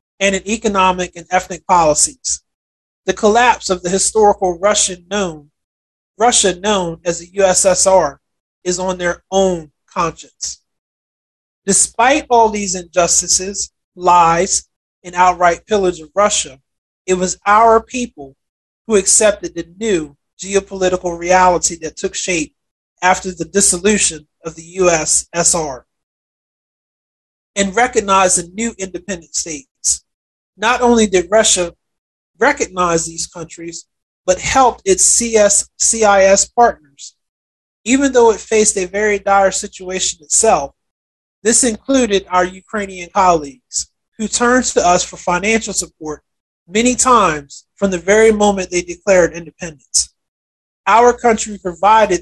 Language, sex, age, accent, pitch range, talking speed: English, male, 30-49, American, 170-205 Hz, 120 wpm